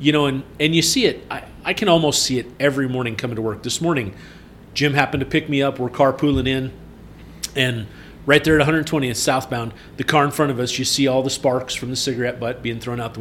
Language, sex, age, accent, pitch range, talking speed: English, male, 40-59, American, 115-150 Hz, 245 wpm